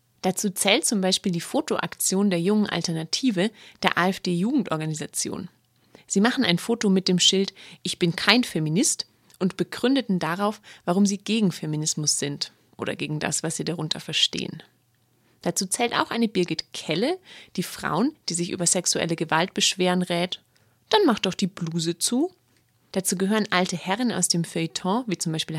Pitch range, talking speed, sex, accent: 170-205 Hz, 160 wpm, female, German